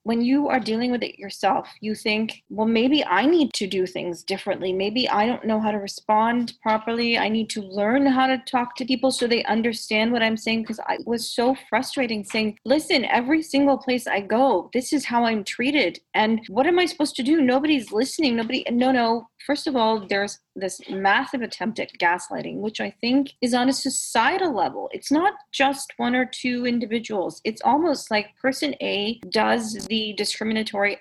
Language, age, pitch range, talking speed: English, 30-49, 215-270 Hz, 195 wpm